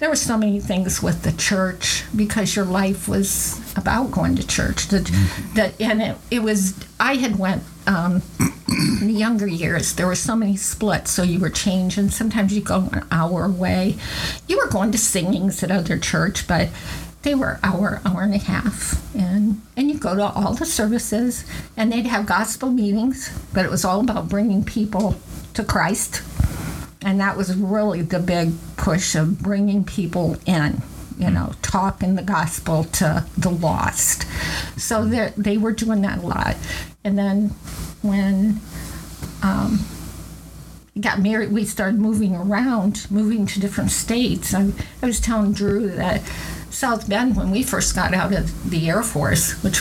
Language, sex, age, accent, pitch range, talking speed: English, female, 50-69, American, 185-215 Hz, 170 wpm